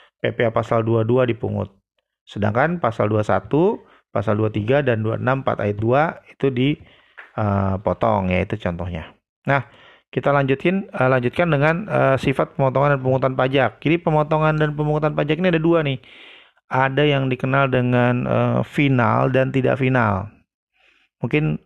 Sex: male